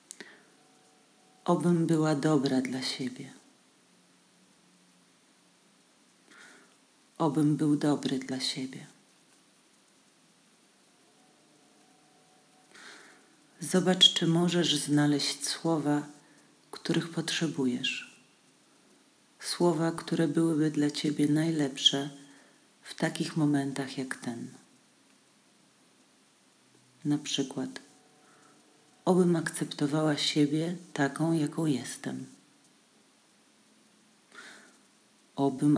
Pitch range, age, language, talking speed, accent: 140-160 Hz, 40-59, Polish, 60 wpm, native